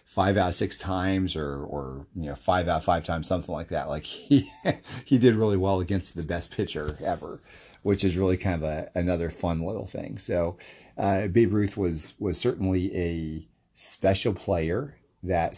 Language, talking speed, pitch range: English, 190 wpm, 80-95 Hz